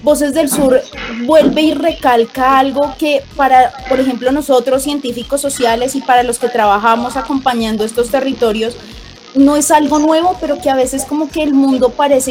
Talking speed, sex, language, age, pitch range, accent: 170 wpm, female, Spanish, 20-39, 240-280 Hz, Colombian